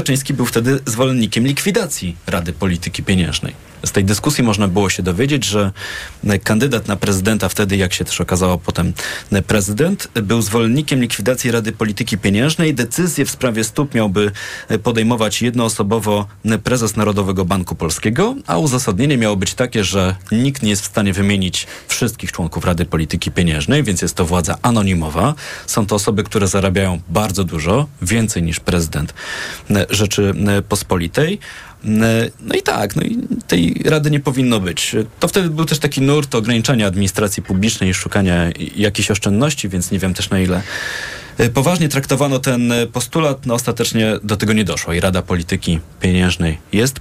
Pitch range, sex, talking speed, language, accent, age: 95-120 Hz, male, 155 wpm, Polish, native, 30-49